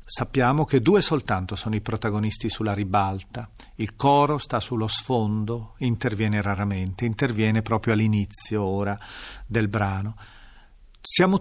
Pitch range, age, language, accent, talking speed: 110-150 Hz, 40-59, Italian, native, 120 wpm